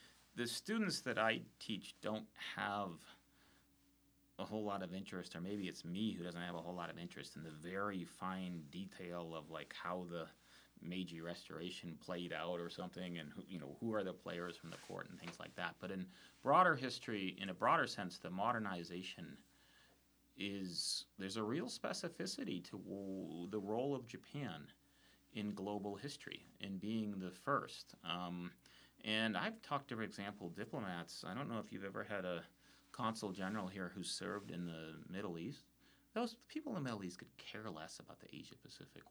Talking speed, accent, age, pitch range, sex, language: 180 wpm, American, 30-49, 90-120 Hz, male, English